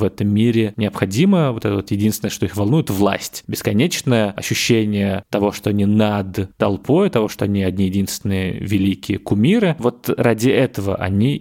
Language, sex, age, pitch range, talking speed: Russian, male, 20-39, 100-120 Hz, 160 wpm